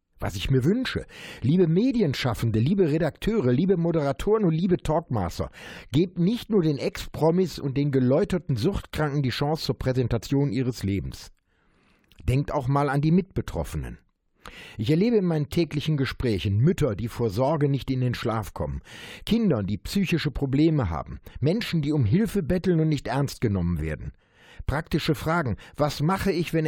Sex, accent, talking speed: male, German, 155 wpm